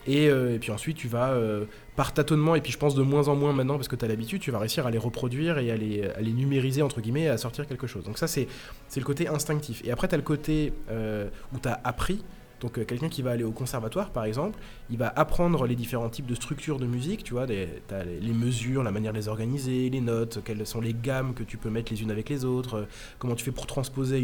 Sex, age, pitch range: male, 20-39, 115-150 Hz